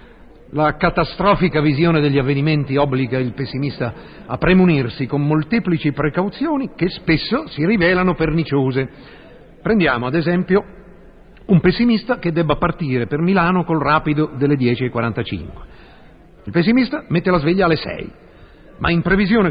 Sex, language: male, Italian